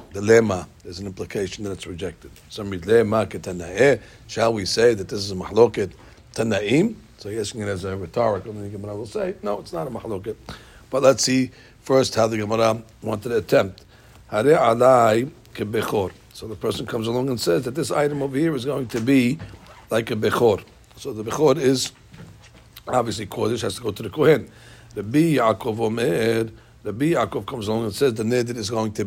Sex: male